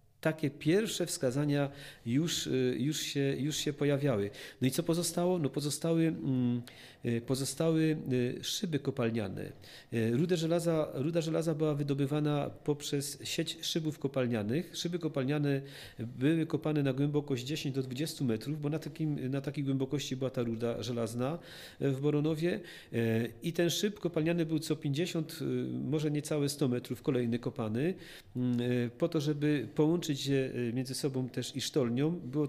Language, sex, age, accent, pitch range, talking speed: Polish, male, 40-59, native, 130-155 Hz, 125 wpm